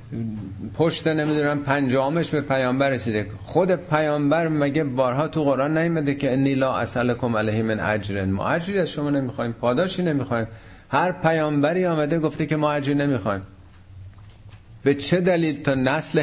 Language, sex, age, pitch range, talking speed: Persian, male, 50-69, 105-145 Hz, 140 wpm